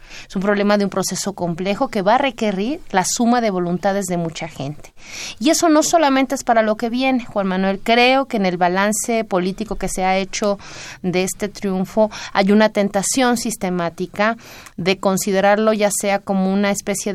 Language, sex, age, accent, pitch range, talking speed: Spanish, female, 30-49, Mexican, 185-230 Hz, 185 wpm